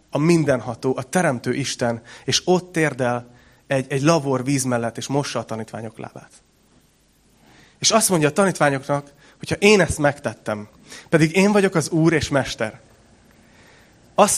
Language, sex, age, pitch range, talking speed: Hungarian, male, 30-49, 130-165 Hz, 145 wpm